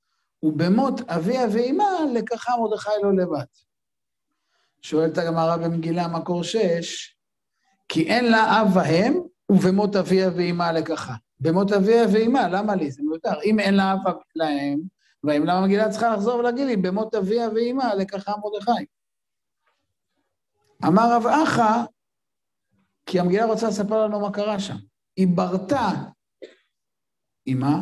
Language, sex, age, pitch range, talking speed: Hebrew, male, 50-69, 180-235 Hz, 125 wpm